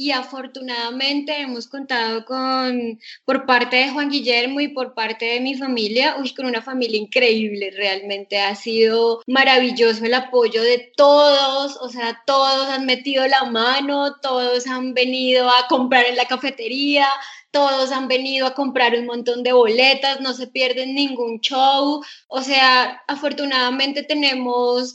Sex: female